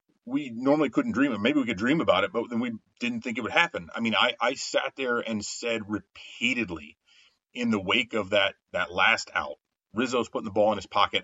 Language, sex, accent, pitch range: English, male, American, 105-125 Hz